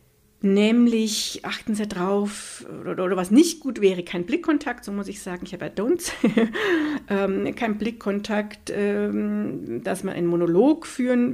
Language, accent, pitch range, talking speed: German, German, 180-220 Hz, 160 wpm